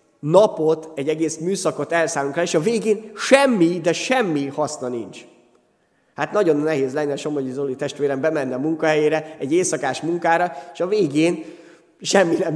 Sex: male